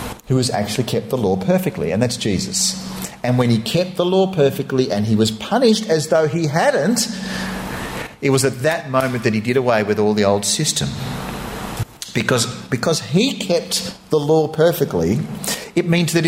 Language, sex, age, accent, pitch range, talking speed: English, male, 40-59, Australian, 130-190 Hz, 180 wpm